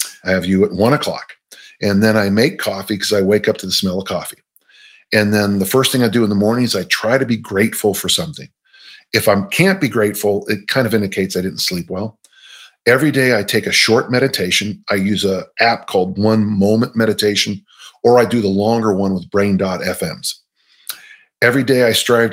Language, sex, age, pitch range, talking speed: English, male, 40-59, 100-125 Hz, 210 wpm